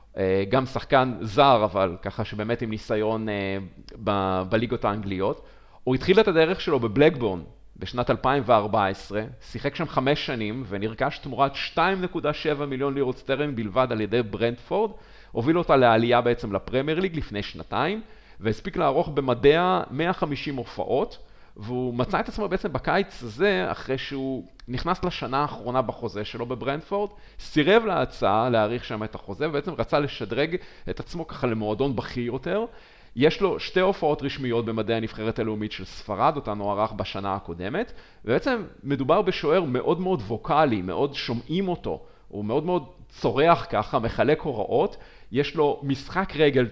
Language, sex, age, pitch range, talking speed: Hebrew, male, 40-59, 110-150 Hz, 140 wpm